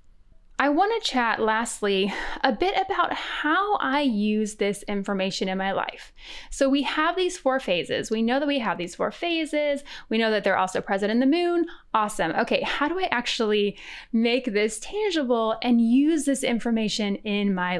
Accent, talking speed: American, 180 wpm